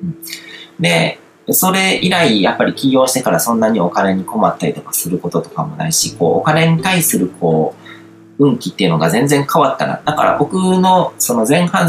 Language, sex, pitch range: Japanese, male, 110-165 Hz